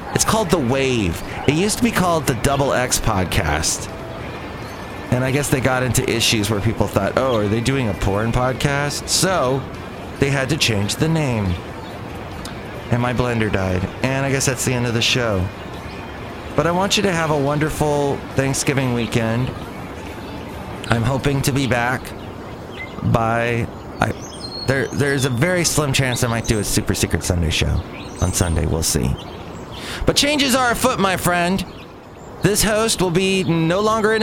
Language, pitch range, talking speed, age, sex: English, 115-150 Hz, 170 wpm, 30-49, male